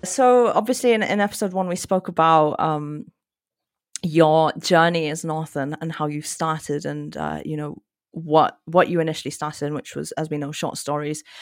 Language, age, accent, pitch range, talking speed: English, 30-49, British, 150-180 Hz, 190 wpm